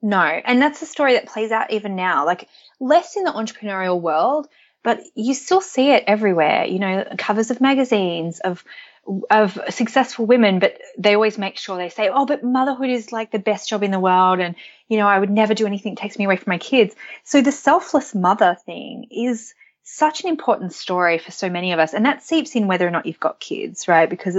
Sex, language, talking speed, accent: female, English, 225 wpm, Australian